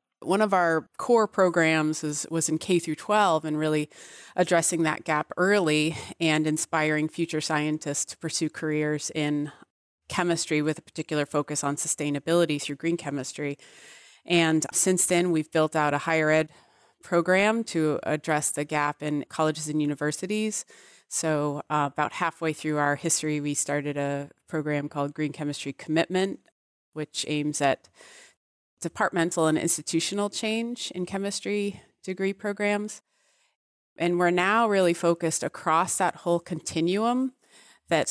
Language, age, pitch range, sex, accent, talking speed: English, 30-49, 150-175 Hz, female, American, 140 wpm